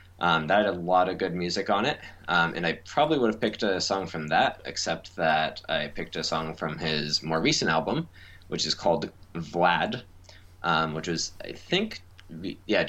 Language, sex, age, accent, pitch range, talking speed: English, male, 20-39, American, 80-95 Hz, 195 wpm